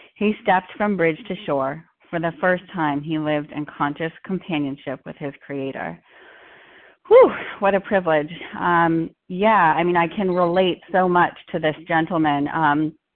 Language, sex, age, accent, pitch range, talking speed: English, female, 30-49, American, 160-195 Hz, 155 wpm